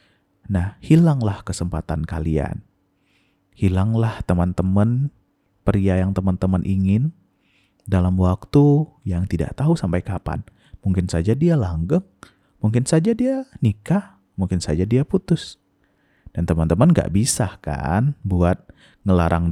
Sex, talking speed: male, 110 wpm